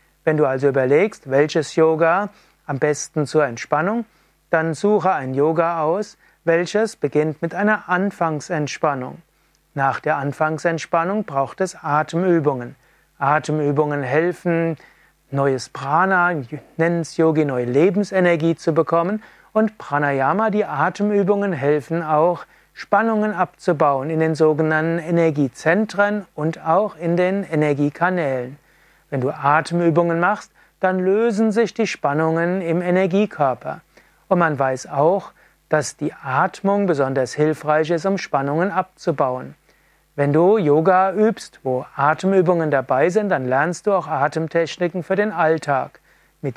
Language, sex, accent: German, male, German